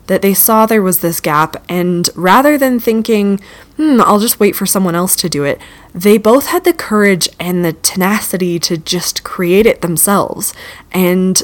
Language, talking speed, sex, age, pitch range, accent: English, 185 wpm, female, 20-39, 170-215 Hz, American